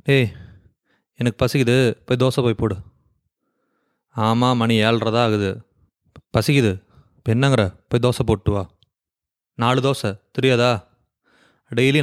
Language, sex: English, male